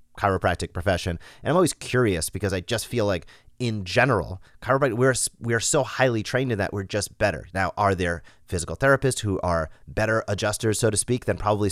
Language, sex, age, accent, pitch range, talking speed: English, male, 30-49, American, 95-125 Hz, 195 wpm